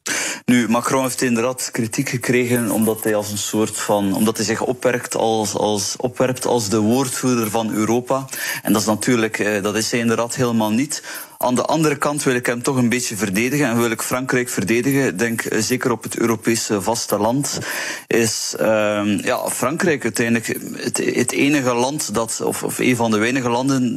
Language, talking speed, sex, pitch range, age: Dutch, 185 wpm, male, 105-125 Hz, 30-49